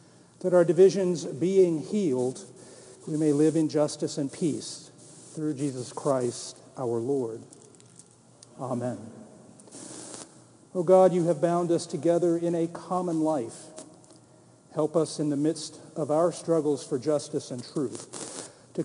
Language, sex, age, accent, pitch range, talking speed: English, male, 50-69, American, 145-170 Hz, 135 wpm